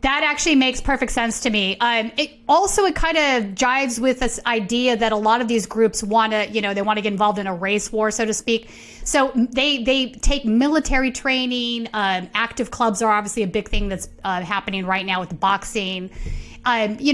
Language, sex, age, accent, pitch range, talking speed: English, female, 30-49, American, 205-250 Hz, 220 wpm